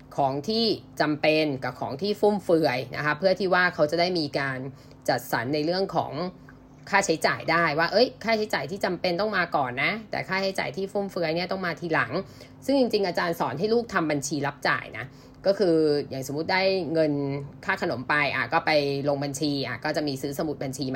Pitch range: 145-180 Hz